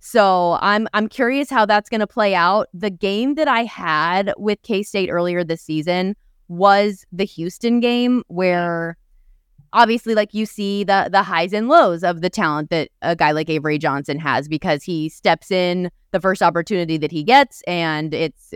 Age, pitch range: 20-39, 160-210 Hz